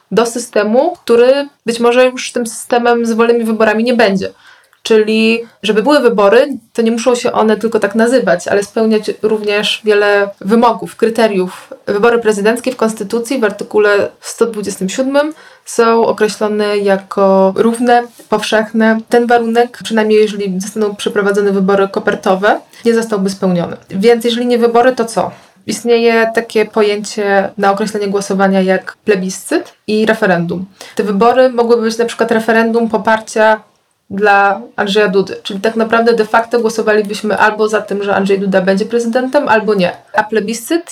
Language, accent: Polish, native